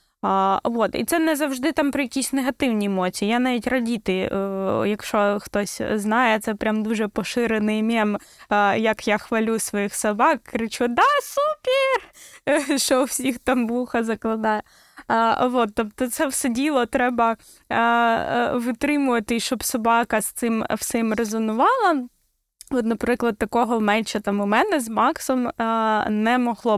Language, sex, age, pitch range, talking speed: Ukrainian, female, 20-39, 220-260 Hz, 130 wpm